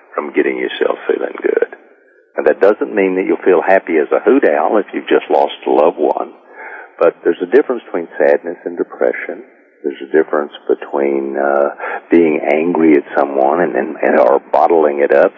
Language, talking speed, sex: English, 185 wpm, male